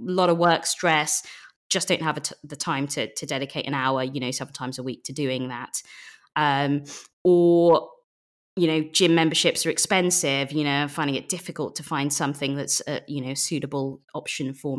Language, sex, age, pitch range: English, female, 20-39, 140-175 Hz